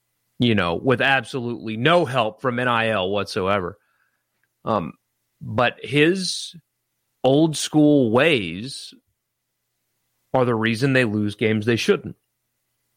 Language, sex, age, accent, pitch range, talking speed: English, male, 30-49, American, 115-185 Hz, 105 wpm